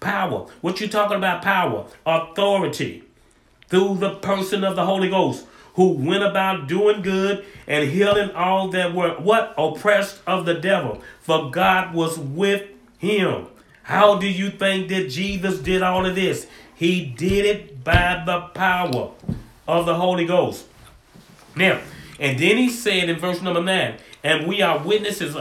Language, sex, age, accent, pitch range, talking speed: English, male, 40-59, American, 165-190 Hz, 160 wpm